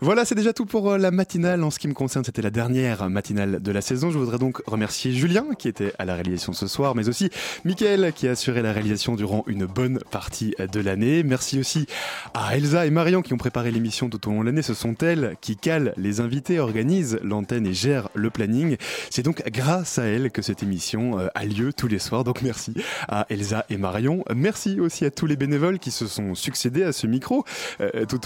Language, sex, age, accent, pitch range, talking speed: French, male, 20-39, French, 105-160 Hz, 225 wpm